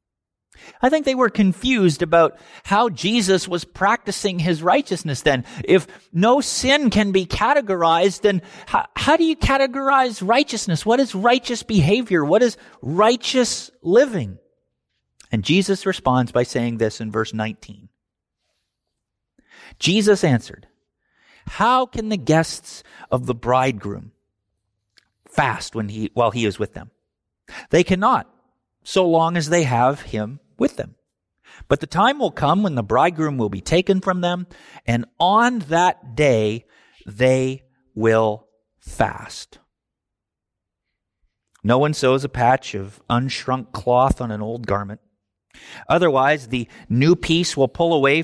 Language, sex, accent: English, male, American